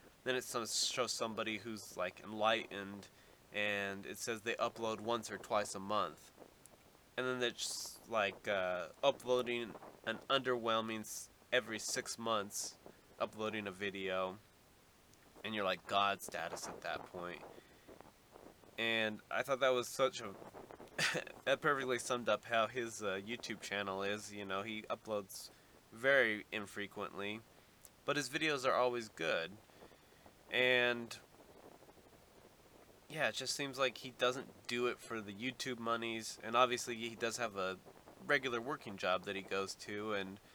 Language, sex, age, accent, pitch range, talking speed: English, male, 20-39, American, 100-120 Hz, 140 wpm